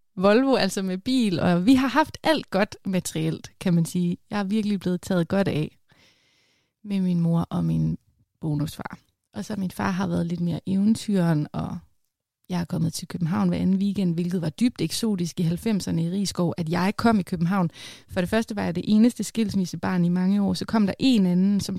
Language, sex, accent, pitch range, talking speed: Danish, female, native, 170-210 Hz, 205 wpm